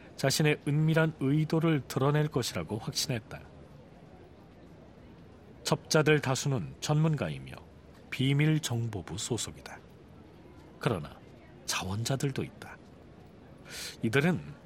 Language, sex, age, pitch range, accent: Korean, male, 40-59, 125-155 Hz, native